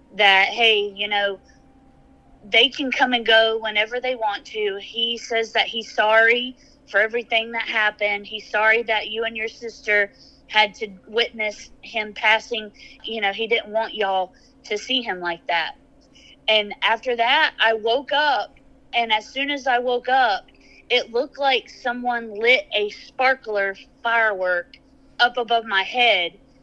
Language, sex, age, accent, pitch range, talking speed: English, female, 20-39, American, 215-260 Hz, 160 wpm